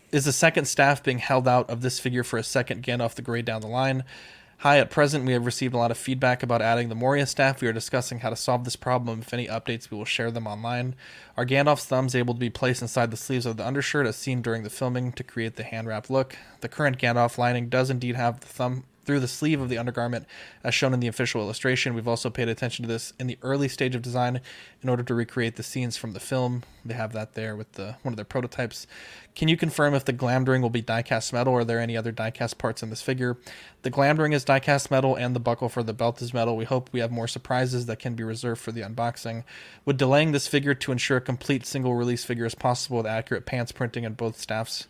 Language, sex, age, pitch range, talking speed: English, male, 20-39, 115-130 Hz, 265 wpm